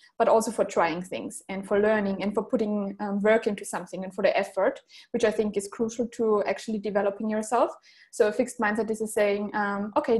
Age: 20-39